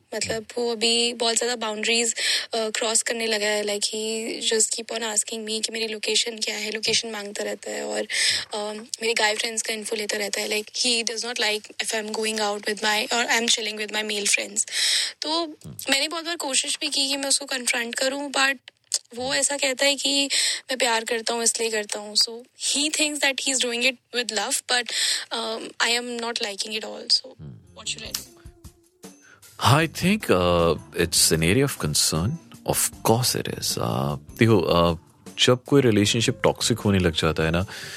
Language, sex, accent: Hindi, female, native